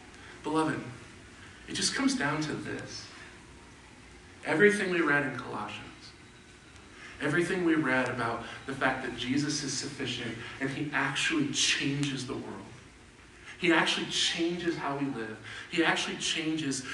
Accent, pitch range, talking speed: American, 125-195 Hz, 130 wpm